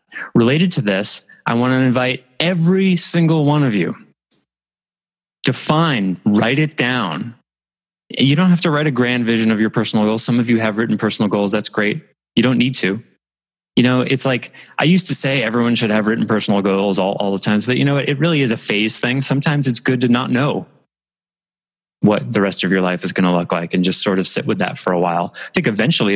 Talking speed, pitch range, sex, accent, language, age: 225 wpm, 100-135 Hz, male, American, English, 20-39